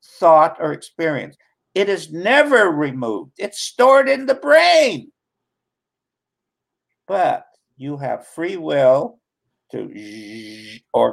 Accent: American